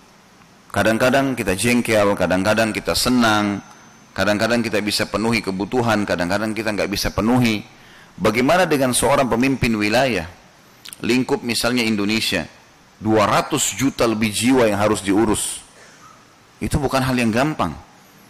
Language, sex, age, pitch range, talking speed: Indonesian, male, 30-49, 105-130 Hz, 120 wpm